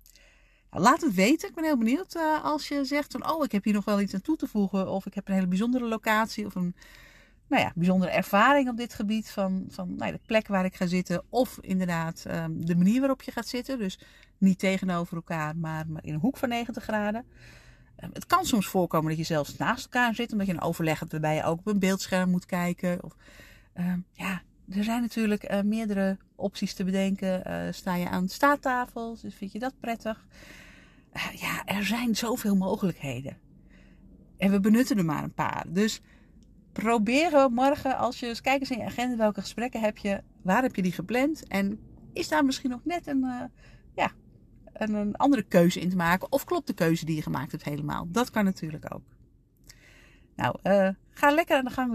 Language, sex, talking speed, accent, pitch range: Dutch, female, 200 wpm, Dutch, 185-250 Hz